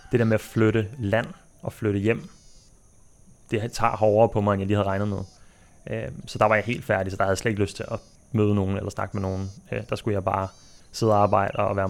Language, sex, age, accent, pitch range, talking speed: Danish, male, 30-49, native, 100-110 Hz, 250 wpm